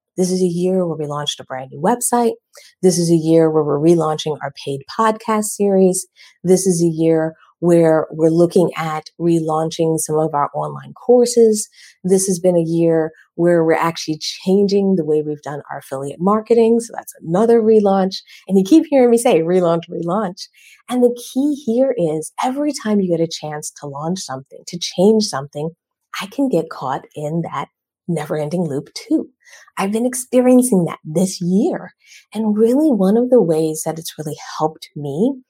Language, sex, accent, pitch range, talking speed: English, female, American, 160-230 Hz, 180 wpm